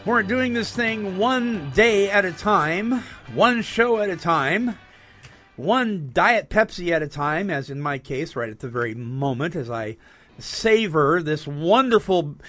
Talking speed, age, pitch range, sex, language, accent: 165 wpm, 50-69, 135-190 Hz, male, English, American